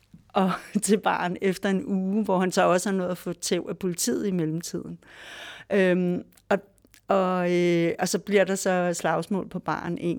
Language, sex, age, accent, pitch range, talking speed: Danish, female, 60-79, native, 180-220 Hz, 190 wpm